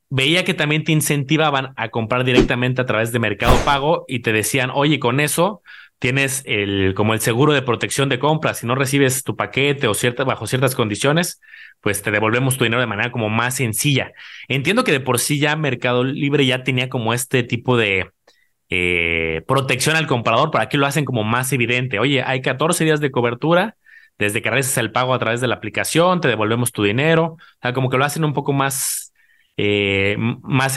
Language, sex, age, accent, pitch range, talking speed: Spanish, male, 30-49, Mexican, 115-145 Hz, 205 wpm